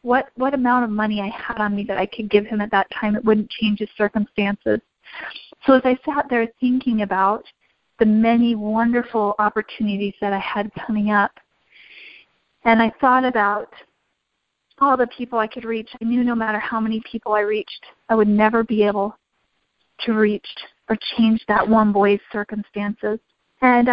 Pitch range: 215-245 Hz